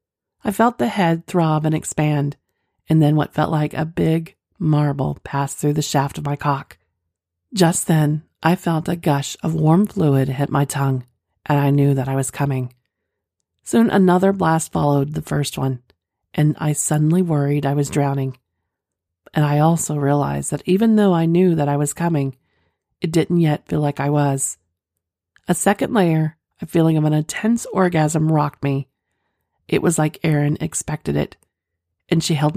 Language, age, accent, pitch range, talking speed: English, 40-59, American, 135-165 Hz, 175 wpm